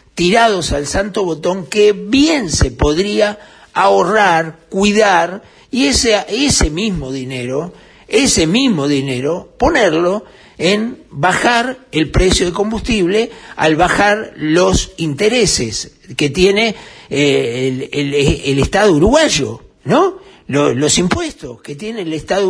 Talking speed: 115 wpm